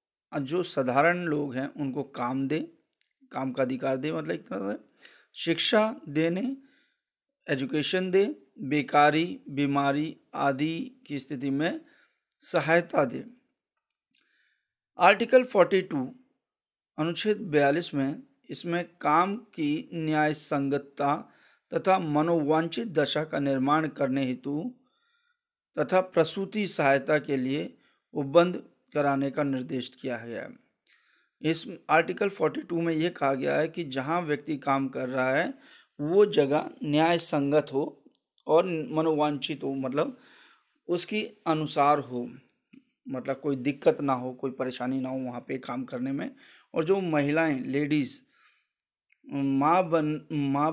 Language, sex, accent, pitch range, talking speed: Hindi, male, native, 140-185 Hz, 120 wpm